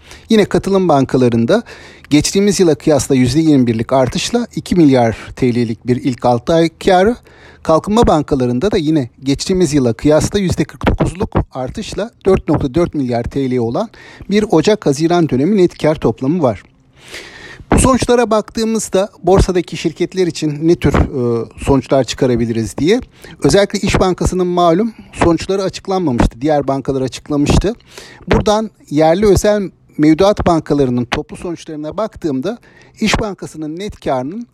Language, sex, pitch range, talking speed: Turkish, male, 135-200 Hz, 120 wpm